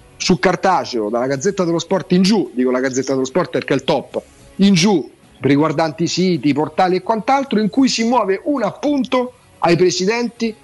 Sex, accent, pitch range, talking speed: male, native, 155-200 Hz, 180 wpm